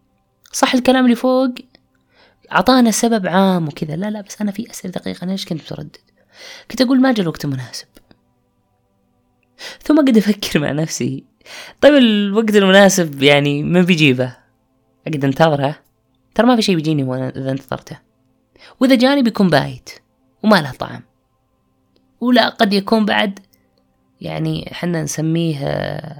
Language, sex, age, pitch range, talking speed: Arabic, female, 20-39, 130-175 Hz, 130 wpm